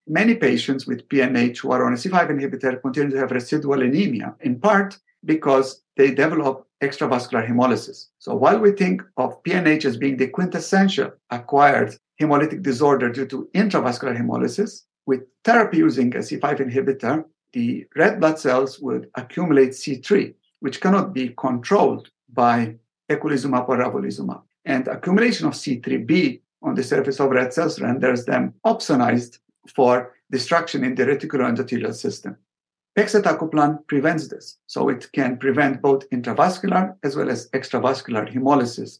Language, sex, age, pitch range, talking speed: English, male, 50-69, 125-175 Hz, 145 wpm